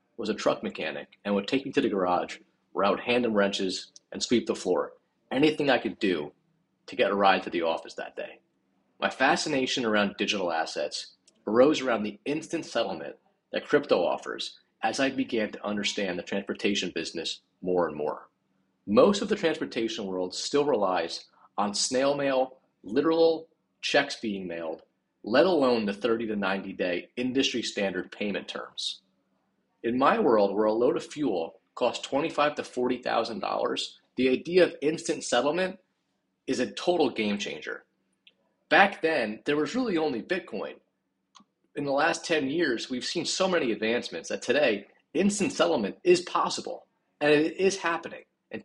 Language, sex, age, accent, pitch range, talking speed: English, male, 30-49, American, 105-165 Hz, 165 wpm